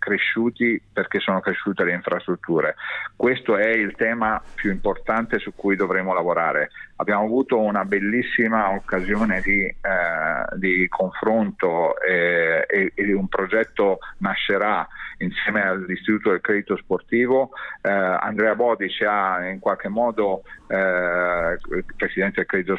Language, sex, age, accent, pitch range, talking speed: Italian, male, 50-69, native, 95-115 Hz, 125 wpm